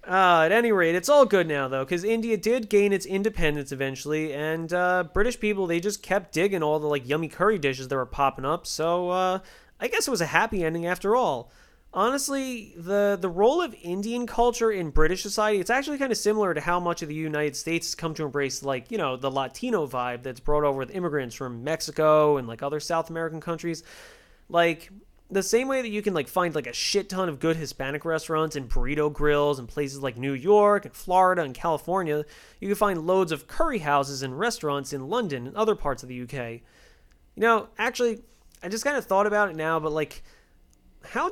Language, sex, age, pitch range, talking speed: English, male, 30-49, 145-205 Hz, 220 wpm